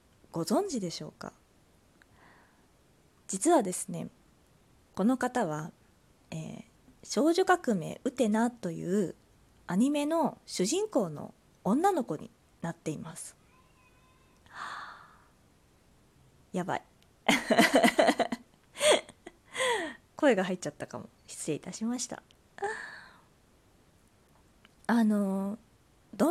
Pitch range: 185-280 Hz